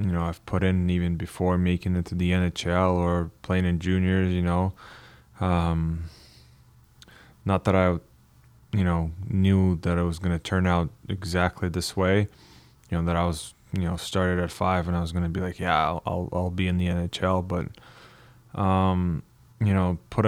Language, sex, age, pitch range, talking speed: English, male, 20-39, 85-95 Hz, 190 wpm